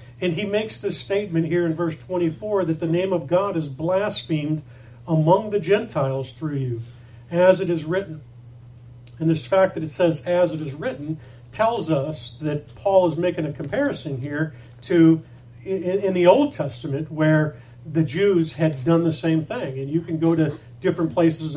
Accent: American